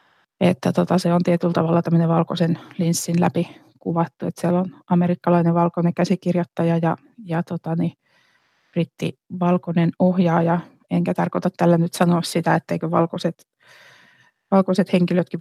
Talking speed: 130 wpm